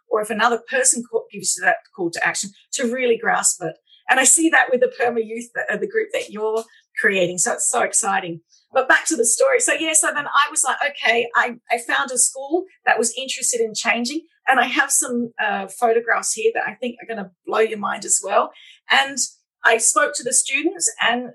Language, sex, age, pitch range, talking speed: English, female, 40-59, 225-270 Hz, 220 wpm